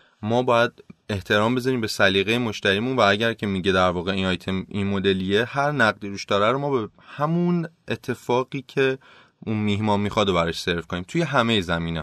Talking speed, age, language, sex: 175 wpm, 30-49, Persian, male